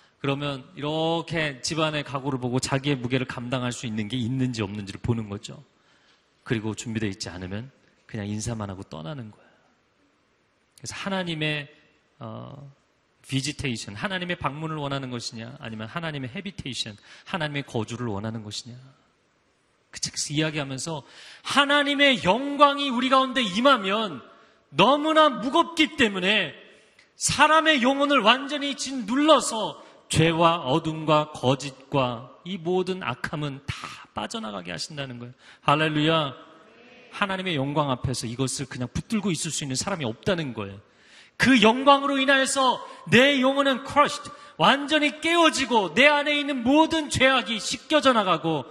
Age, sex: 40-59, male